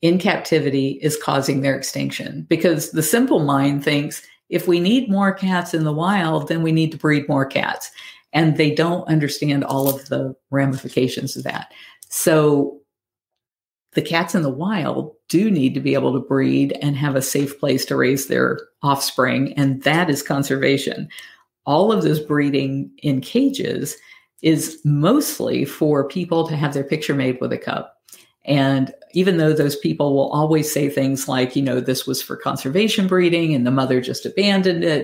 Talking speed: 175 wpm